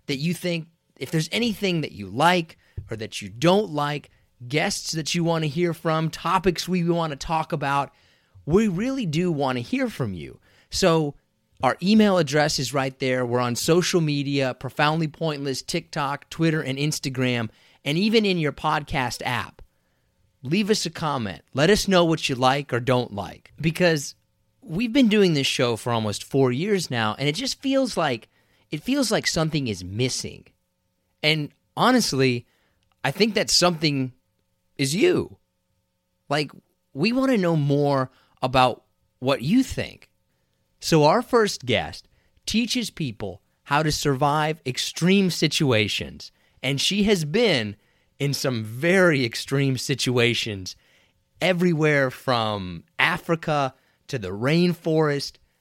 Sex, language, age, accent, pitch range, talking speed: male, English, 30-49, American, 125-175 Hz, 150 wpm